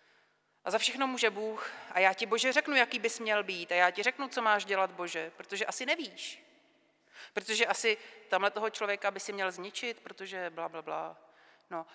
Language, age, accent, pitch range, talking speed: Czech, 40-59, native, 175-220 Hz, 195 wpm